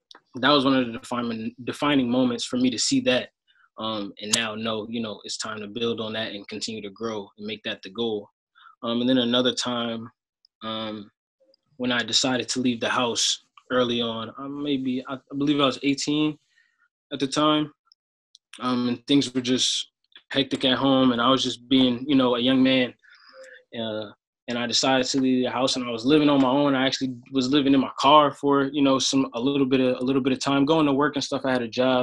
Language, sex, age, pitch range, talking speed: English, male, 20-39, 120-140 Hz, 225 wpm